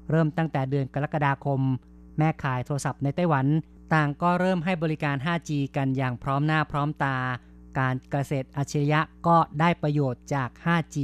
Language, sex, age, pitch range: Thai, female, 30-49, 135-150 Hz